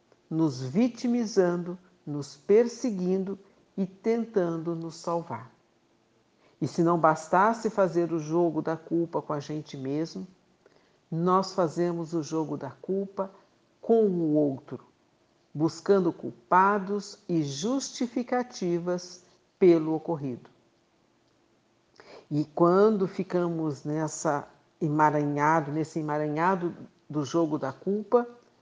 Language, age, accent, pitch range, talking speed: Portuguese, 60-79, Brazilian, 160-200 Hz, 100 wpm